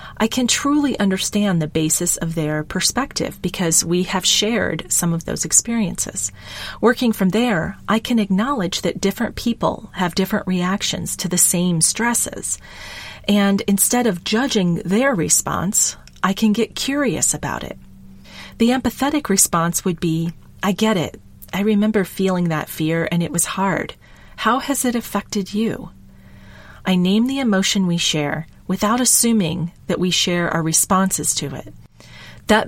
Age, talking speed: 40-59, 150 wpm